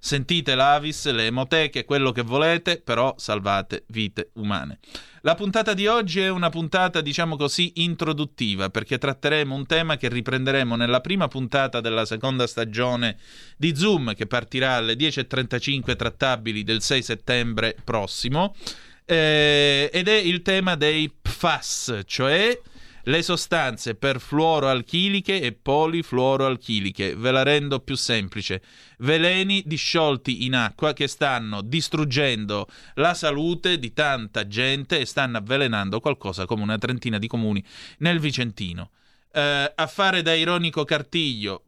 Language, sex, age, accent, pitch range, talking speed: Italian, male, 30-49, native, 115-155 Hz, 130 wpm